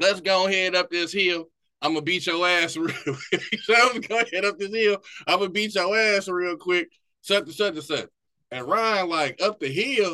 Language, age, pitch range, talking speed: English, 20-39, 170-215 Hz, 205 wpm